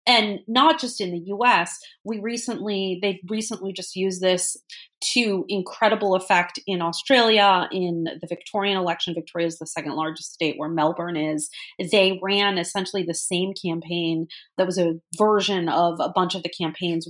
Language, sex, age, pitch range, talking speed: English, female, 30-49, 165-200 Hz, 165 wpm